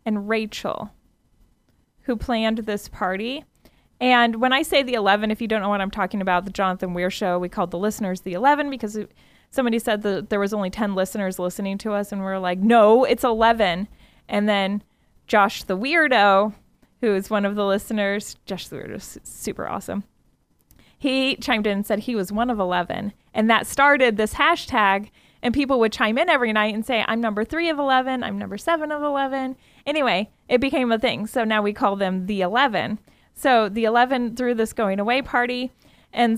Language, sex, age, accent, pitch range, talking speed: English, female, 20-39, American, 205-250 Hz, 200 wpm